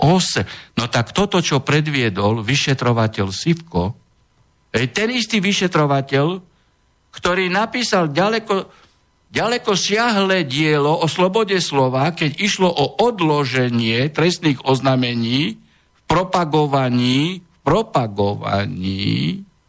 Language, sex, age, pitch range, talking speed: Slovak, male, 60-79, 125-180 Hz, 95 wpm